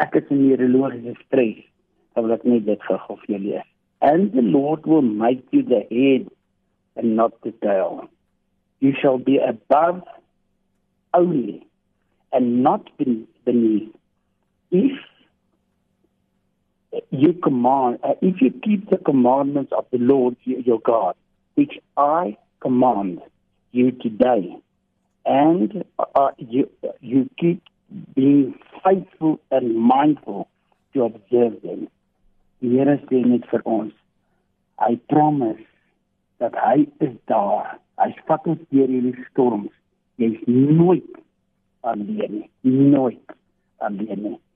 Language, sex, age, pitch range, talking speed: Dutch, male, 60-79, 120-155 Hz, 100 wpm